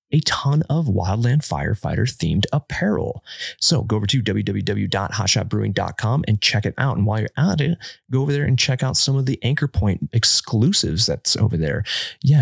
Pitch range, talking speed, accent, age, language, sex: 100-130 Hz, 180 wpm, American, 30-49, English, male